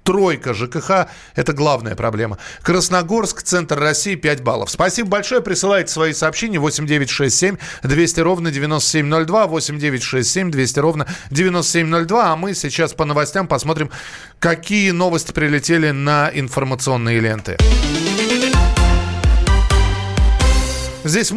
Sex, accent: male, native